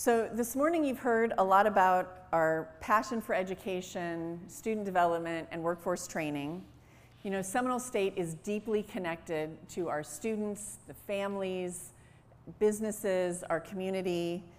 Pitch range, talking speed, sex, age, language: 170-210 Hz, 130 wpm, female, 30-49, English